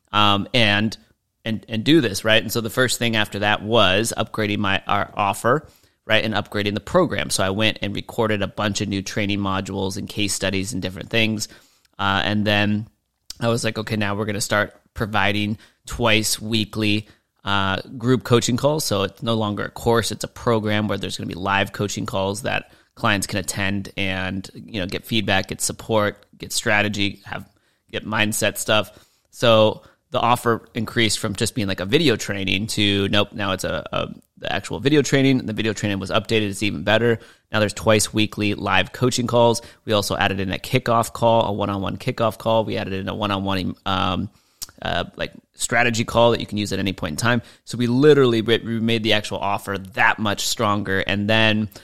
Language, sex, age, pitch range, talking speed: English, male, 30-49, 100-115 Hz, 200 wpm